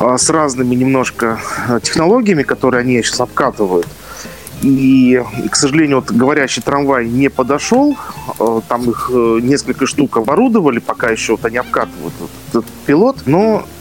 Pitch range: 115-145 Hz